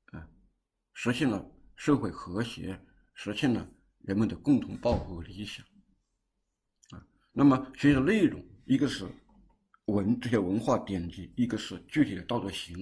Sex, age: male, 50-69